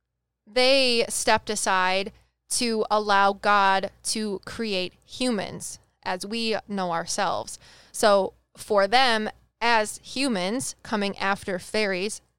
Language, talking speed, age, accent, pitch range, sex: English, 100 wpm, 20-39, American, 190-220 Hz, female